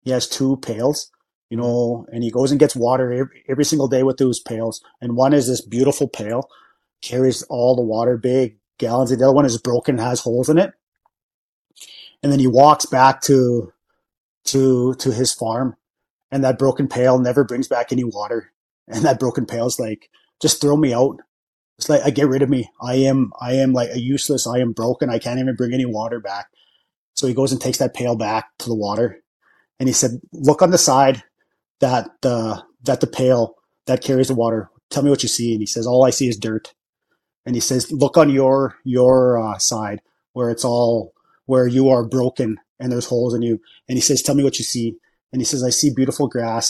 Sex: male